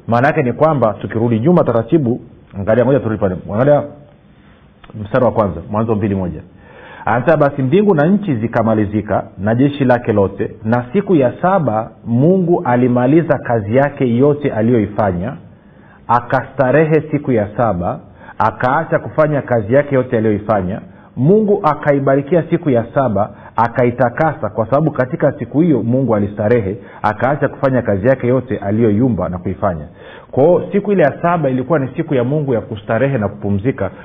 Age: 40-59